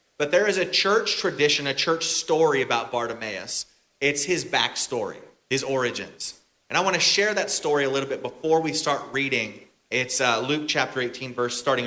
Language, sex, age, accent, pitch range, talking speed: English, male, 30-49, American, 125-160 Hz, 180 wpm